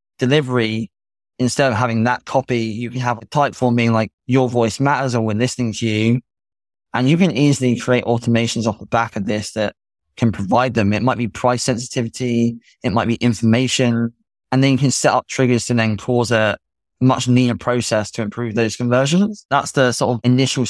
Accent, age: British, 20-39